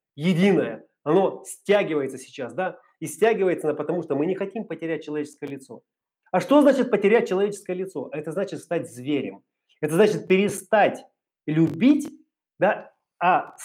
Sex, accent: male, native